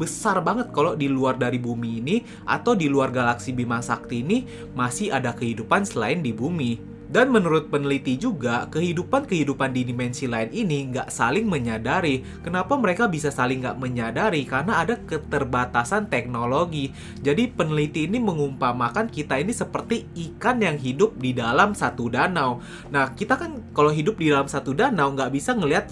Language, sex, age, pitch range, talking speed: Indonesian, male, 20-39, 125-195 Hz, 160 wpm